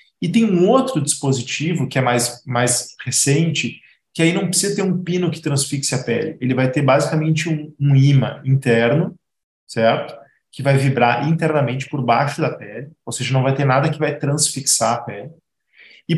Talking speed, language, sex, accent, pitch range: 185 wpm, Portuguese, male, Brazilian, 125-160 Hz